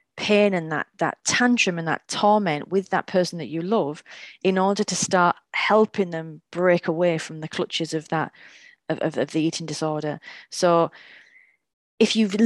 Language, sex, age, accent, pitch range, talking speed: English, female, 30-49, British, 170-215 Hz, 175 wpm